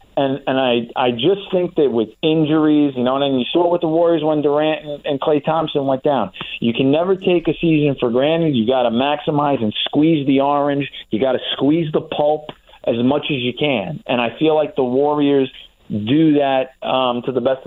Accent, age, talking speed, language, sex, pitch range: American, 30-49, 220 wpm, English, male, 125-145 Hz